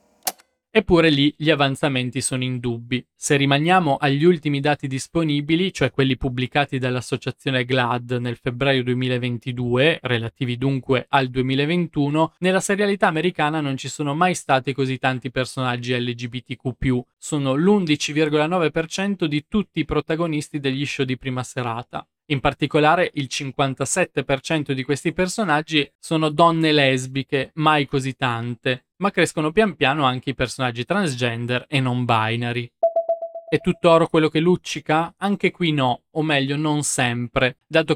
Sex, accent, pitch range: male, native, 130-155 Hz